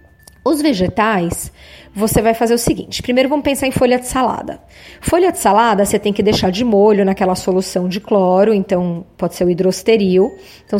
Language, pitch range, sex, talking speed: Portuguese, 195-245 Hz, female, 185 wpm